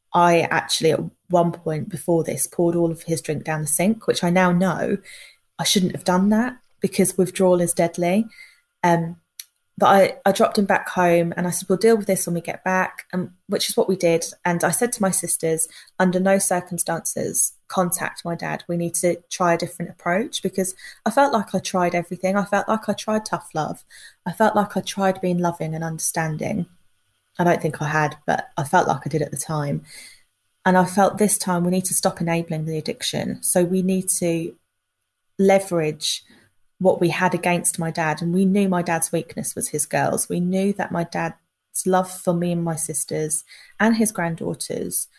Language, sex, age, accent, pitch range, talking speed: English, female, 20-39, British, 165-190 Hz, 205 wpm